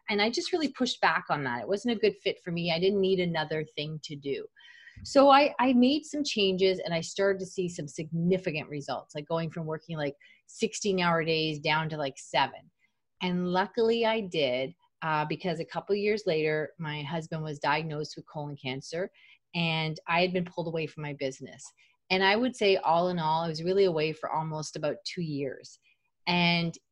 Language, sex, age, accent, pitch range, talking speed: English, female, 30-49, American, 155-190 Hz, 205 wpm